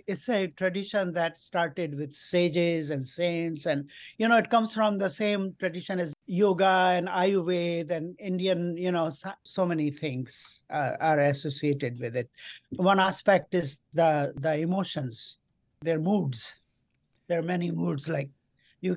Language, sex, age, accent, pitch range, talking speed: English, male, 50-69, Indian, 155-190 Hz, 155 wpm